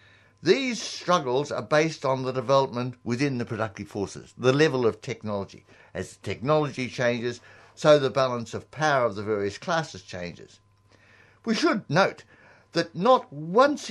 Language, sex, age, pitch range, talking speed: English, male, 60-79, 110-150 Hz, 145 wpm